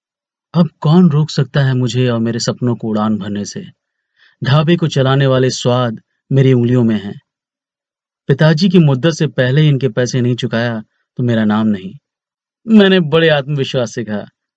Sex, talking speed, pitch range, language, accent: male, 165 wpm, 135-215 Hz, Hindi, native